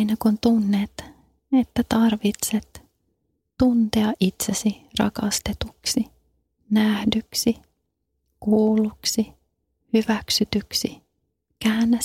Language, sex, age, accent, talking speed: Finnish, female, 30-49, native, 60 wpm